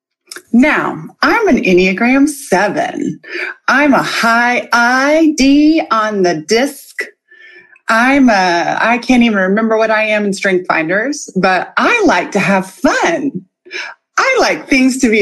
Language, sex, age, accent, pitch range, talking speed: English, female, 30-49, American, 195-310 Hz, 140 wpm